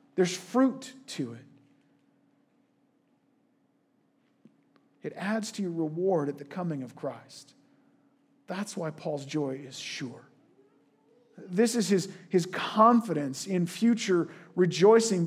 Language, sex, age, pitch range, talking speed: English, male, 40-59, 170-230 Hz, 110 wpm